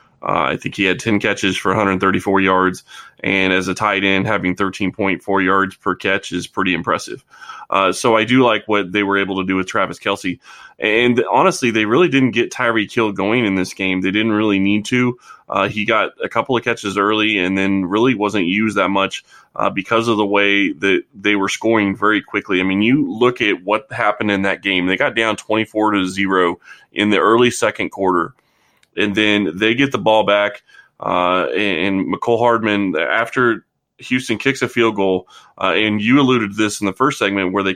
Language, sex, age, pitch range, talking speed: English, male, 20-39, 100-120 Hz, 205 wpm